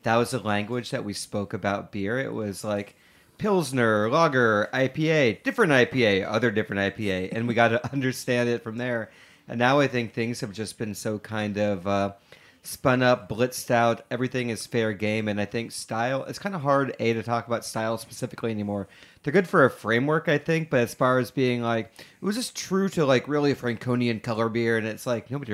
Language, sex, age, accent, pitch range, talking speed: English, male, 30-49, American, 110-130 Hz, 210 wpm